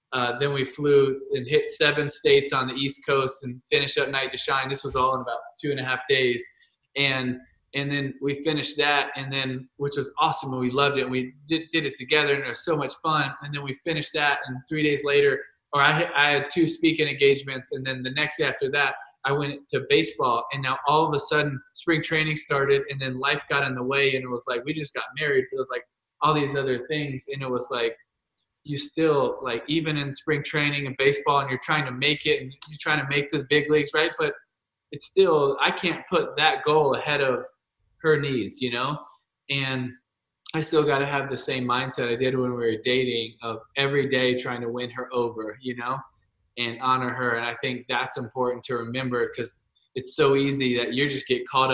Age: 20-39